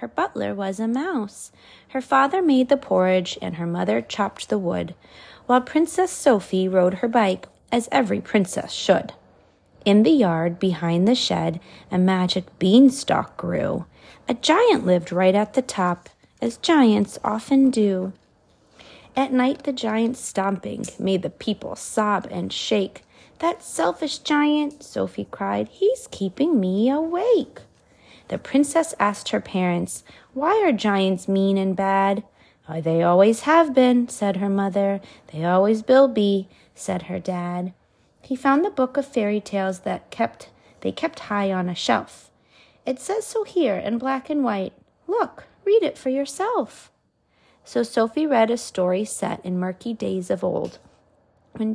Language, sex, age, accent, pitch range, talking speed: English, female, 30-49, American, 190-275 Hz, 155 wpm